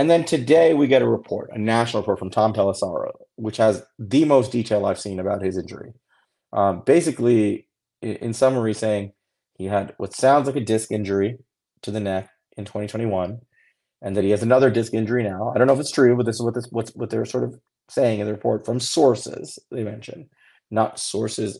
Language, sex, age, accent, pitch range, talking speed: English, male, 30-49, American, 105-125 Hz, 210 wpm